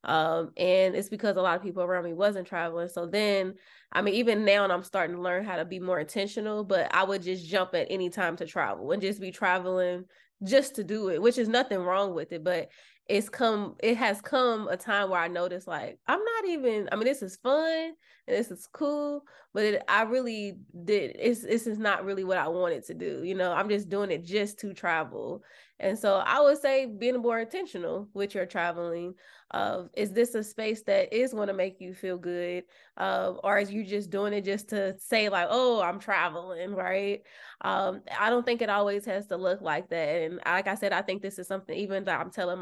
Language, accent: English, American